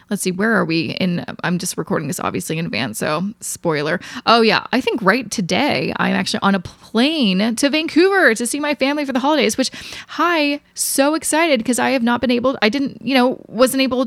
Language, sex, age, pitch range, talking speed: English, female, 20-39, 195-260 Hz, 215 wpm